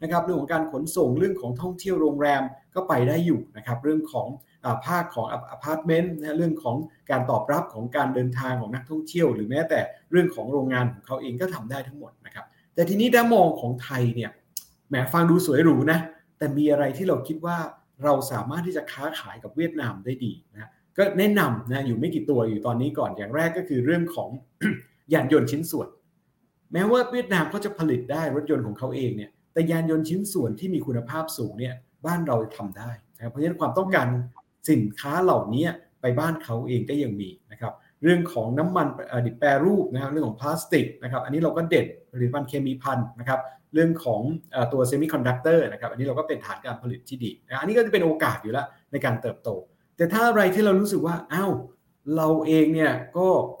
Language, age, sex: English, 60-79, male